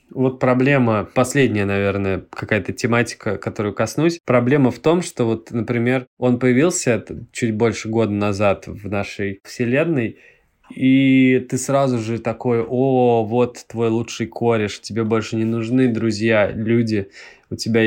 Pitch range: 110-130 Hz